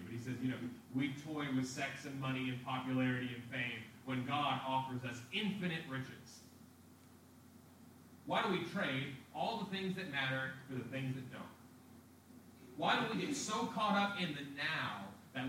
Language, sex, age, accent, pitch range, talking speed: English, male, 30-49, American, 110-135 Hz, 175 wpm